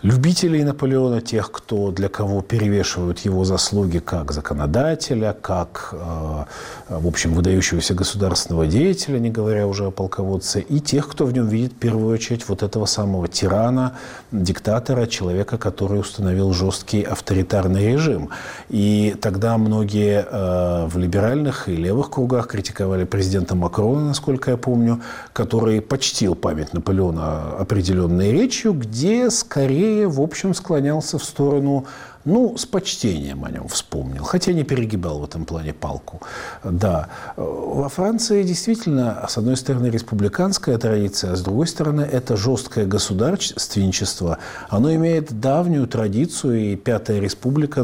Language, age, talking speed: Russian, 40-59, 130 wpm